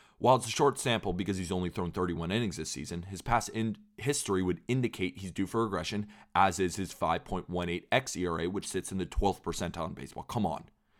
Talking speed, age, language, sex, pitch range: 205 wpm, 30-49, English, male, 90-110 Hz